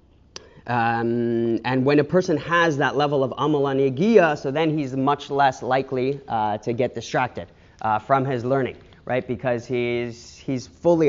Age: 30-49